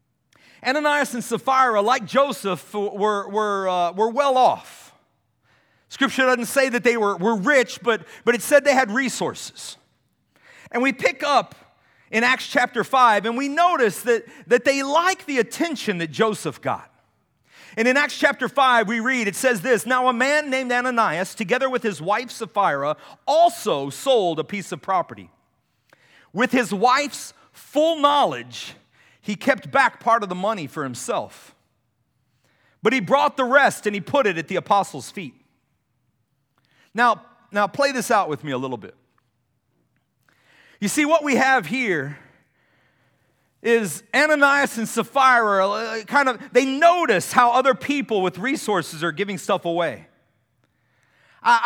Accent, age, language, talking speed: American, 40-59, English, 155 wpm